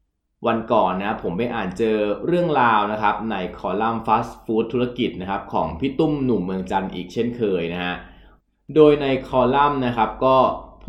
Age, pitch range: 20-39, 95-135 Hz